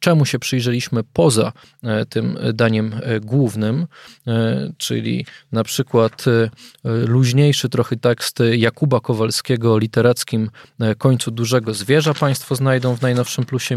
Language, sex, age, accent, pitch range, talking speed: Polish, male, 20-39, native, 115-145 Hz, 110 wpm